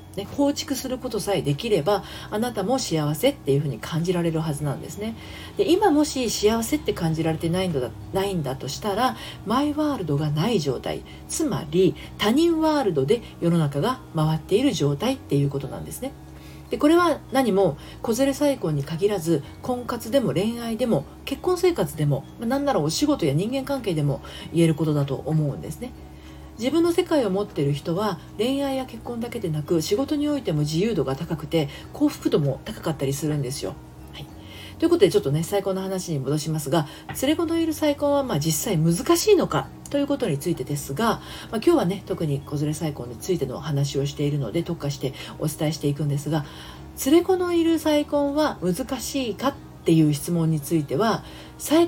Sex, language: female, Japanese